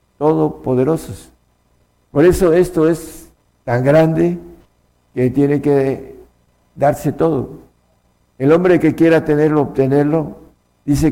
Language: Spanish